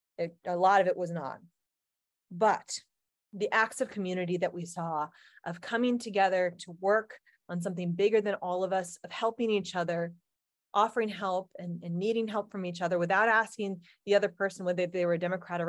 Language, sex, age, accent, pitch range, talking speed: English, female, 30-49, American, 175-210 Hz, 190 wpm